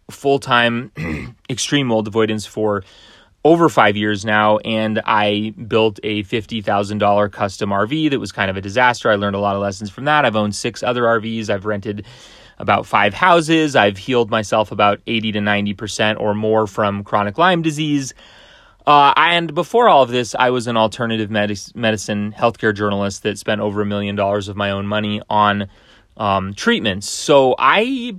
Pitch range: 105-125 Hz